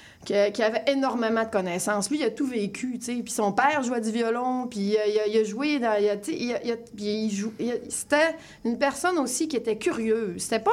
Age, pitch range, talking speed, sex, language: 30-49, 215-275 Hz, 185 wpm, female, French